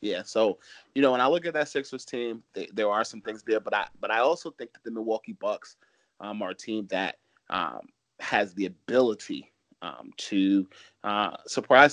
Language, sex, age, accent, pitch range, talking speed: English, male, 30-49, American, 100-110 Hz, 200 wpm